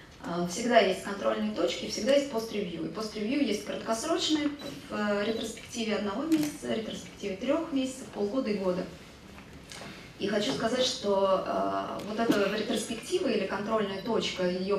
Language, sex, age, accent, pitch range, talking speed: Russian, female, 20-39, native, 190-225 Hz, 130 wpm